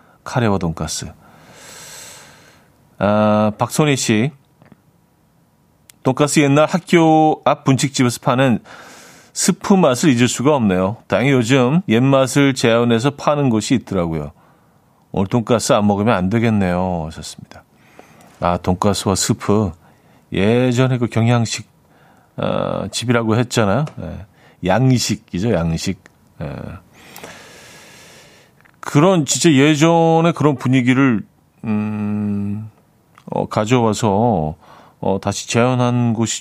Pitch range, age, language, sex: 105-140 Hz, 40-59, Korean, male